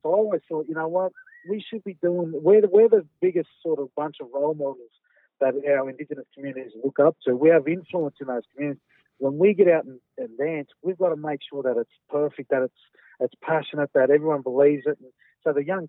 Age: 40-59